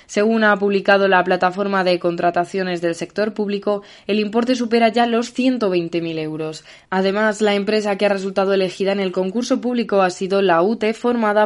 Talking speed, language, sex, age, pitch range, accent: 175 wpm, Spanish, female, 20-39, 175-210 Hz, Spanish